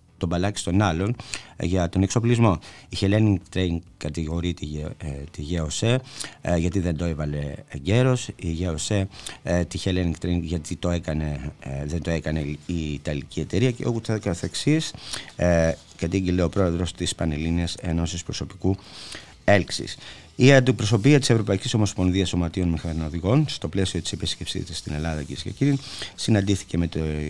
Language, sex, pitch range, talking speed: Greek, male, 80-100 Hz, 140 wpm